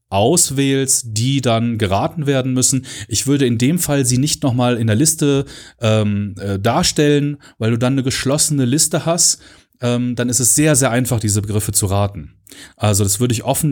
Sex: male